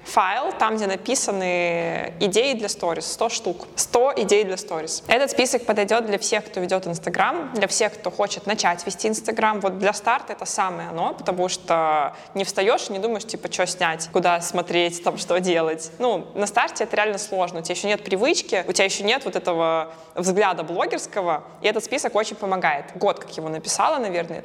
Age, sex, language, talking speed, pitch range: 20-39, female, Russian, 190 wpm, 175-215 Hz